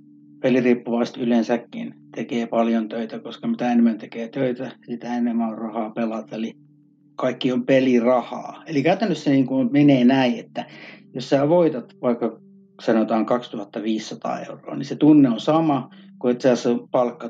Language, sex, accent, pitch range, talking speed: Finnish, male, native, 115-170 Hz, 145 wpm